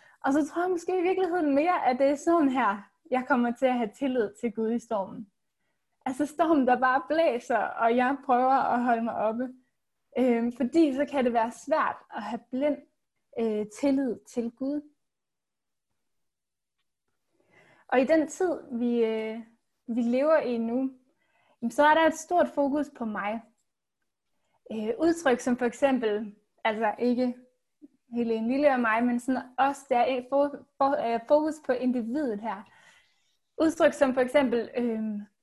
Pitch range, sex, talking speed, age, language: 235-295 Hz, female, 145 wpm, 20-39, Danish